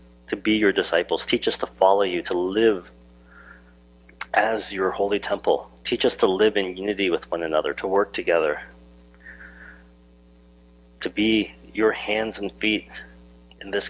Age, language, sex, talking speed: 30-49, English, male, 150 wpm